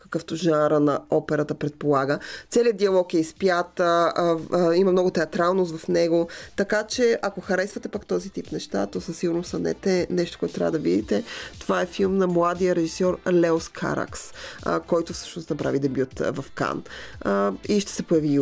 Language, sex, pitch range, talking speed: Bulgarian, female, 160-190 Hz, 165 wpm